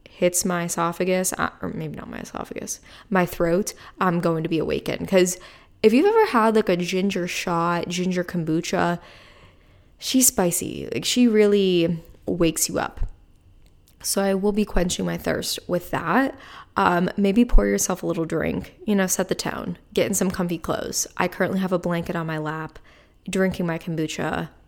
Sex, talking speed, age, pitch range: female, 175 wpm, 20-39, 165-210 Hz